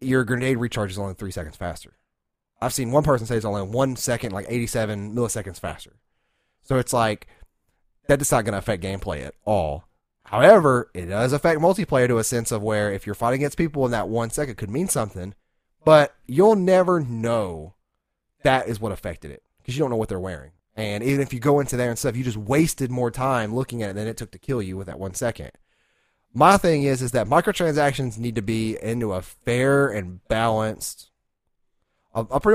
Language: English